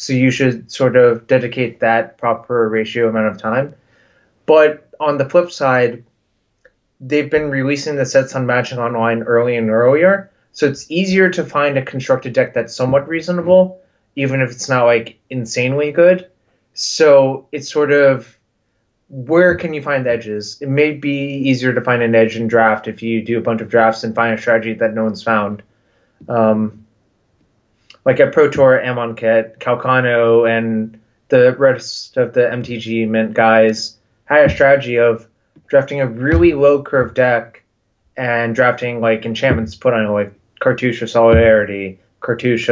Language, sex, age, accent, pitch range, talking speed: English, male, 20-39, American, 110-140 Hz, 165 wpm